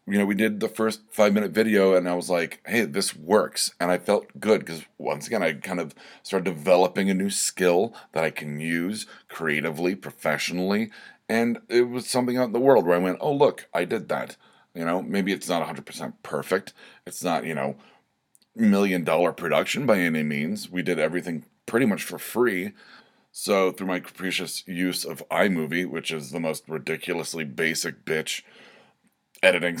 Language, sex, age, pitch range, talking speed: English, male, 40-59, 85-110 Hz, 180 wpm